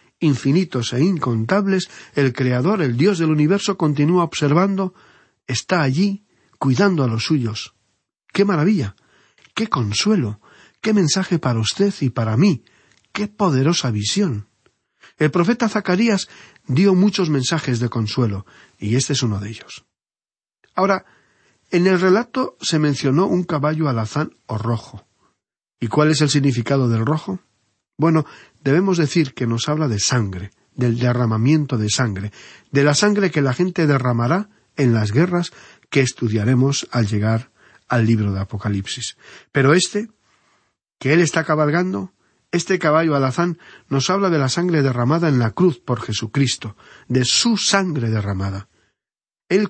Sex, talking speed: male, 140 wpm